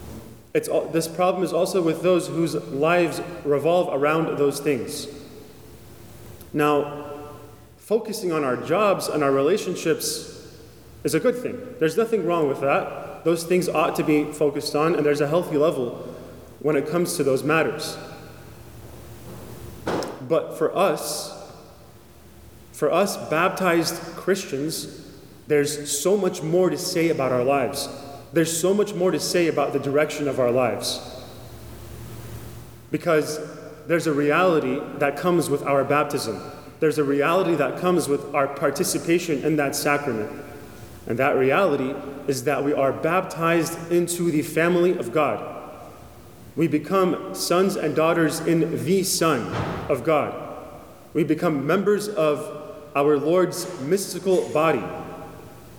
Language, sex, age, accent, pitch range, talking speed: English, male, 30-49, American, 140-170 Hz, 135 wpm